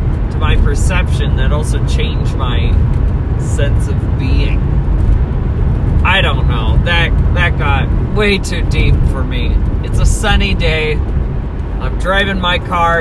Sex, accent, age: male, American, 30-49